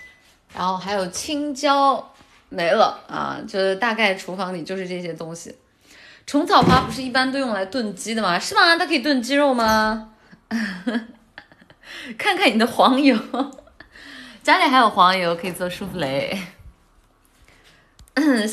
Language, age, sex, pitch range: Chinese, 20-39, female, 185-285 Hz